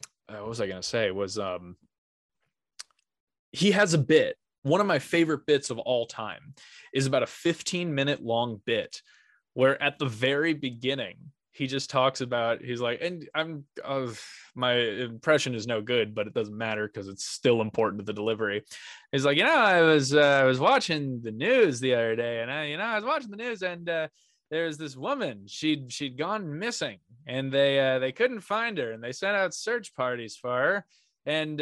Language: English